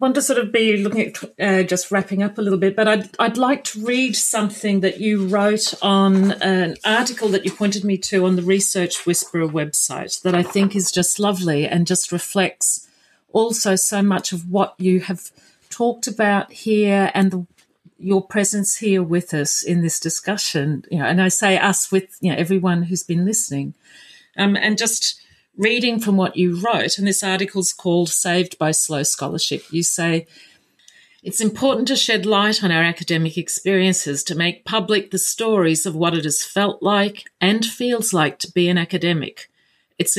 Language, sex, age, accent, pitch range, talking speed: English, female, 40-59, Australian, 175-205 Hz, 190 wpm